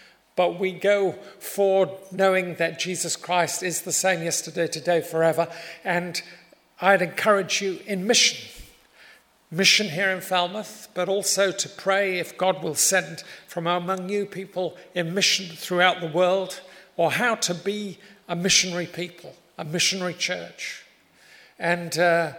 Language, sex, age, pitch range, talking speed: English, male, 50-69, 165-190 Hz, 140 wpm